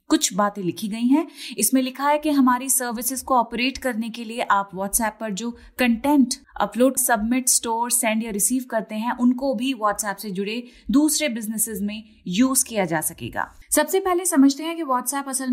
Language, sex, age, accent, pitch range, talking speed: Hindi, female, 30-49, native, 210-270 Hz, 185 wpm